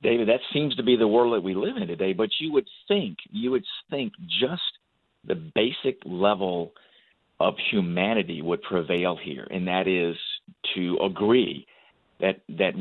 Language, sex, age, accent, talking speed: English, male, 50-69, American, 165 wpm